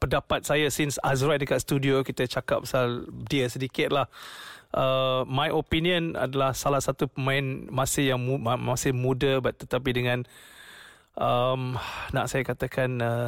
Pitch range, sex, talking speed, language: 130-150 Hz, male, 140 wpm, English